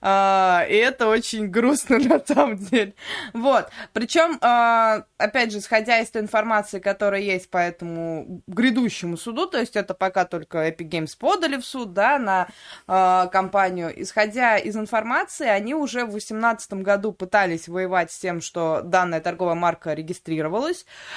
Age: 20-39